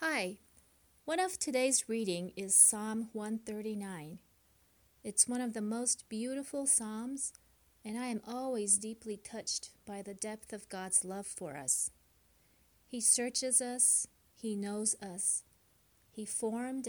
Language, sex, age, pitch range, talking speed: English, female, 40-59, 185-245 Hz, 130 wpm